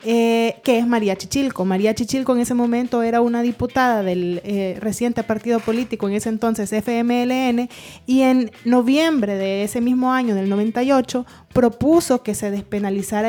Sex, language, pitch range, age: female, Spanish, 215-255 Hz, 20-39